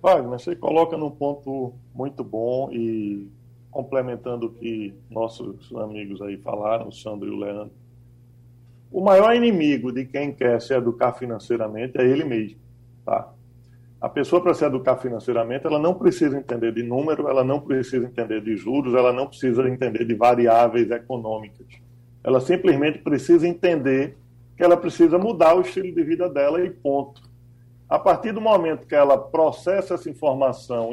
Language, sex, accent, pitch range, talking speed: Portuguese, male, Brazilian, 120-180 Hz, 155 wpm